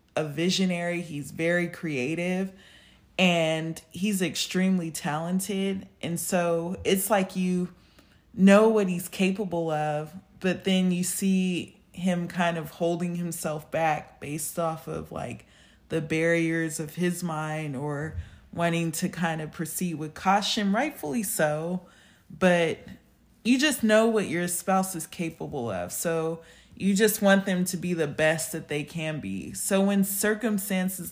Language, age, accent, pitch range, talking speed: English, 20-39, American, 160-190 Hz, 145 wpm